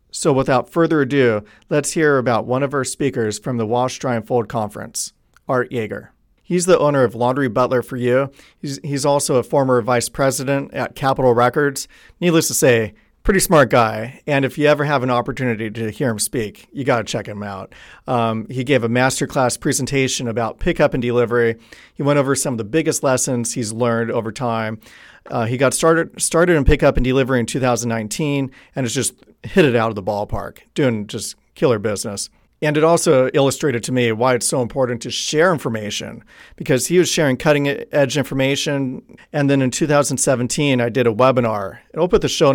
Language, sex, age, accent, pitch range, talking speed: English, male, 40-59, American, 120-145 Hz, 195 wpm